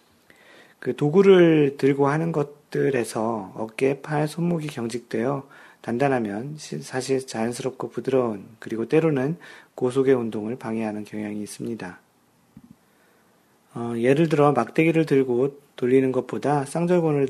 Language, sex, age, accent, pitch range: Korean, male, 40-59, native, 110-145 Hz